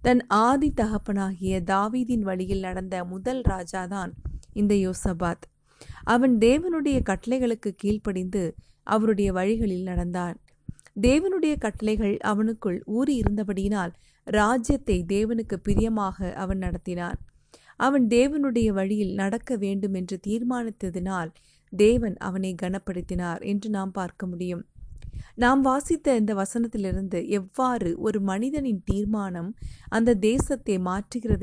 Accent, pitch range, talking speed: native, 185-230 Hz, 95 wpm